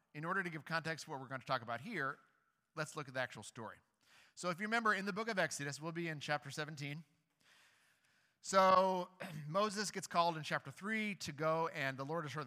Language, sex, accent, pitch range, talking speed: English, male, American, 135-170 Hz, 225 wpm